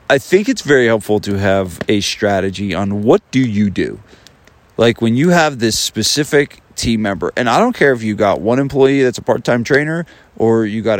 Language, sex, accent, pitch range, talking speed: English, male, American, 95-115 Hz, 205 wpm